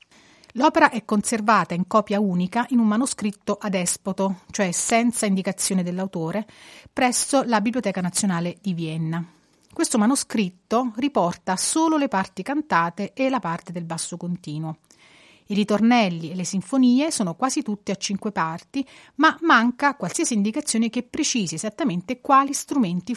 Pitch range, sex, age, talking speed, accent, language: 180-245 Hz, female, 30-49, 140 wpm, native, Italian